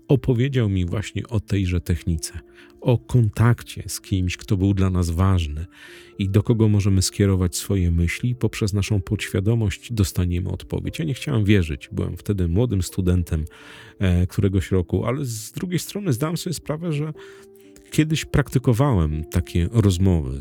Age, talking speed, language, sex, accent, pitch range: 40-59, 145 wpm, Polish, male, native, 90-130 Hz